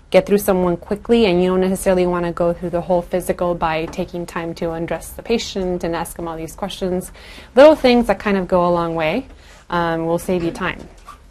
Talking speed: 225 wpm